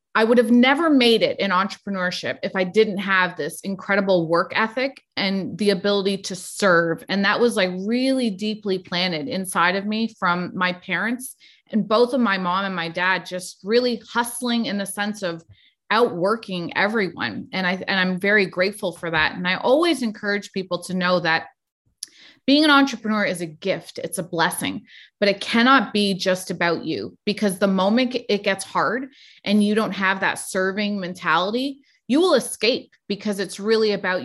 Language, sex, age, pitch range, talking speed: English, female, 30-49, 180-220 Hz, 180 wpm